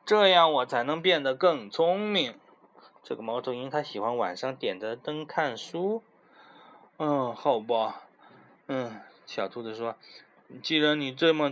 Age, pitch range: 20-39, 135-180 Hz